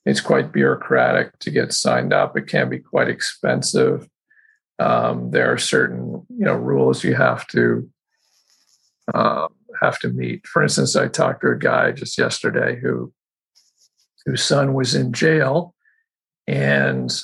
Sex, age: male, 50-69